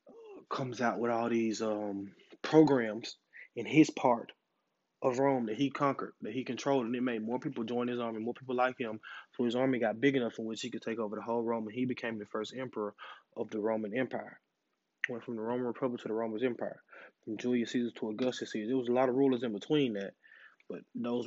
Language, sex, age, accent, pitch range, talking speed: English, male, 20-39, American, 115-130 Hz, 230 wpm